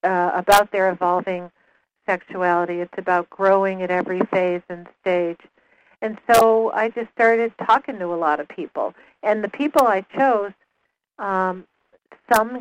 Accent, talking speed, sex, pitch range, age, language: American, 150 wpm, female, 175-205 Hz, 60-79, English